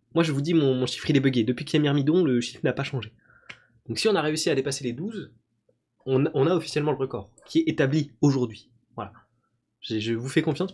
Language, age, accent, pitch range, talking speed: French, 20-39, French, 115-150 Hz, 250 wpm